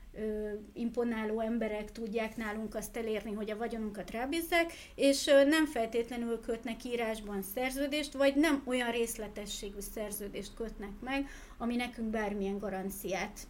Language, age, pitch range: Hungarian, 30-49, 215-260 Hz